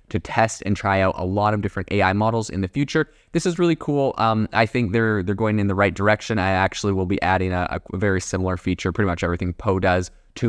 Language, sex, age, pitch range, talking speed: English, male, 20-39, 95-120 Hz, 250 wpm